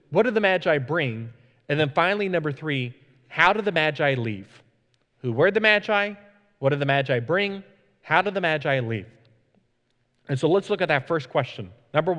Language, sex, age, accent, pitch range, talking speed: English, male, 30-49, American, 125-175 Hz, 185 wpm